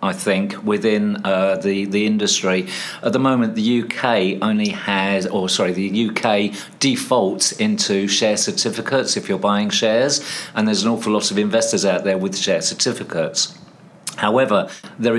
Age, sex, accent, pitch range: 50-69, male, British, 100-115 Hz